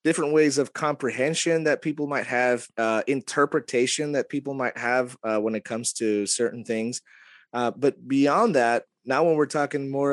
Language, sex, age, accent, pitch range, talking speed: English, male, 30-49, American, 115-140 Hz, 180 wpm